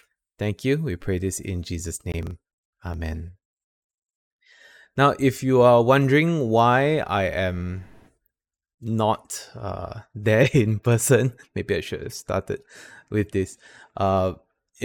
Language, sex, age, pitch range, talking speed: English, male, 20-39, 95-120 Hz, 120 wpm